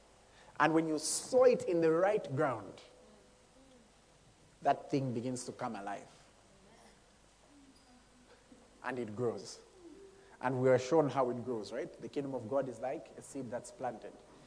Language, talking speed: English, 150 wpm